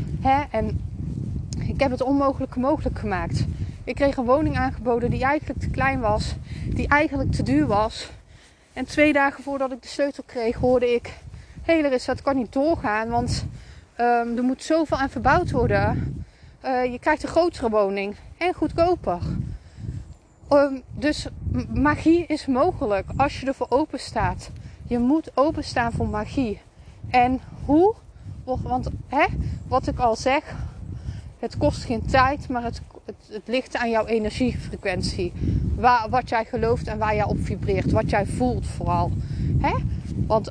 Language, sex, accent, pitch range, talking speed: Dutch, female, Dutch, 225-285 Hz, 155 wpm